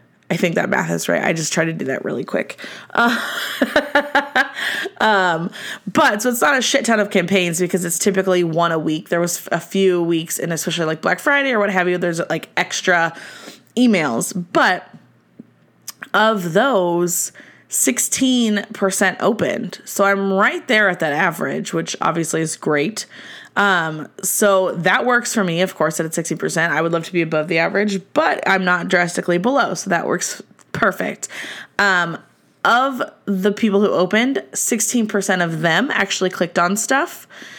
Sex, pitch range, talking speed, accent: female, 170-220 Hz, 170 wpm, American